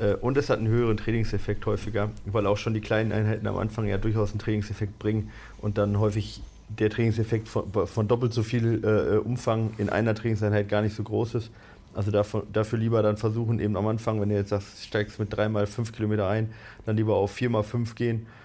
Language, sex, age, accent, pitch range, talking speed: German, male, 30-49, German, 105-120 Hz, 200 wpm